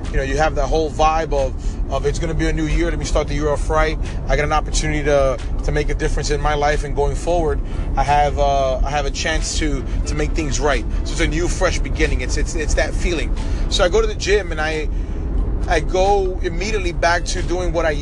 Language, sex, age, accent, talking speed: English, male, 30-49, American, 255 wpm